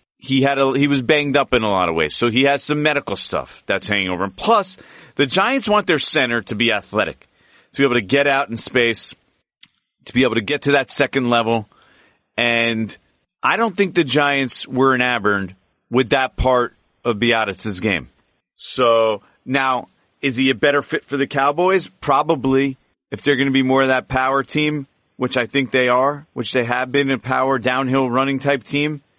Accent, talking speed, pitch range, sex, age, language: American, 205 wpm, 110-140 Hz, male, 40-59, English